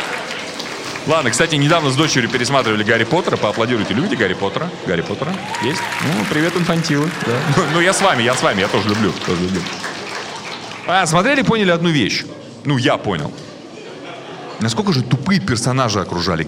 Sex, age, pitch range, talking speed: male, 30-49, 150-235 Hz, 155 wpm